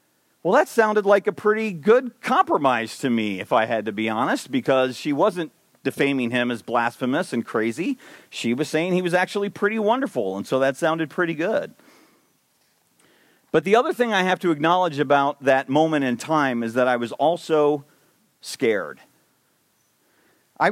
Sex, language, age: male, English, 40-59